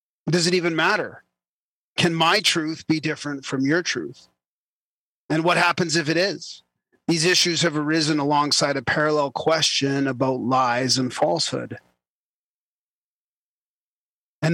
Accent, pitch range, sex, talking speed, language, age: American, 135-170 Hz, male, 130 wpm, English, 40-59